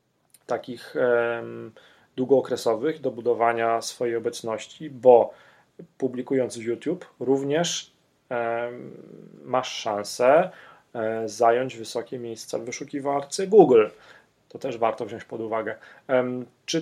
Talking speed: 95 wpm